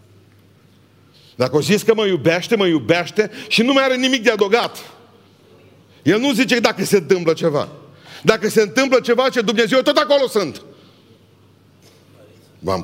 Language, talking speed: Romanian, 150 wpm